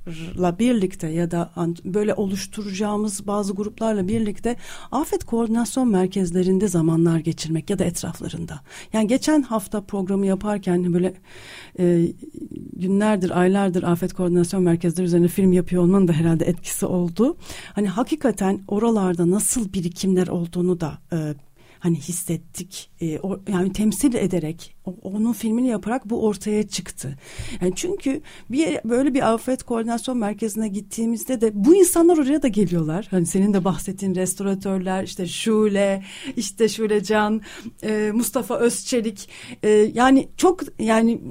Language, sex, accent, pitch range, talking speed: Turkish, female, native, 180-245 Hz, 125 wpm